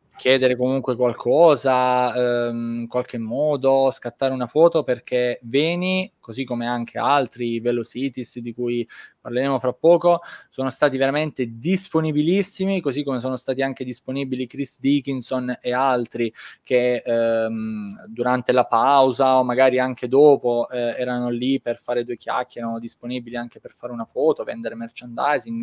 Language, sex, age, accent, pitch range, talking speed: Italian, male, 20-39, native, 120-150 Hz, 145 wpm